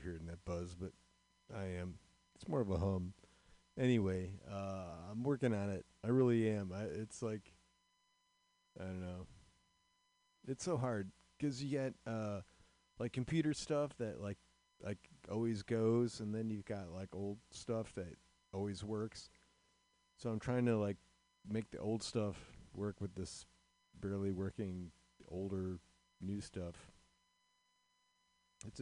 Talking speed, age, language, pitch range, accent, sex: 140 wpm, 40-59, English, 95-135 Hz, American, male